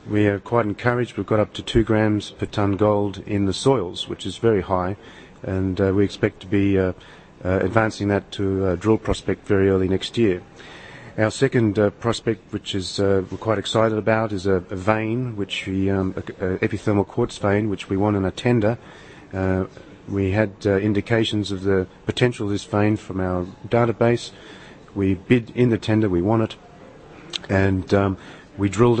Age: 40-59